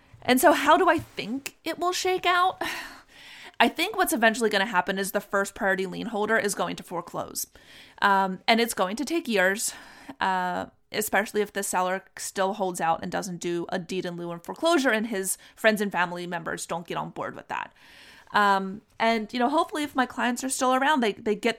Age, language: 30-49, English